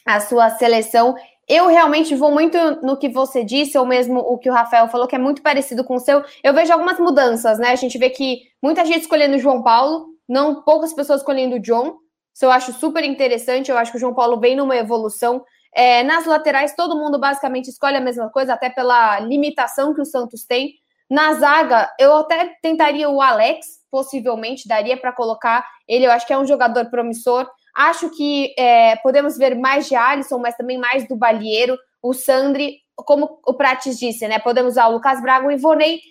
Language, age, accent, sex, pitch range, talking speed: Portuguese, 10-29, Brazilian, female, 250-295 Hz, 205 wpm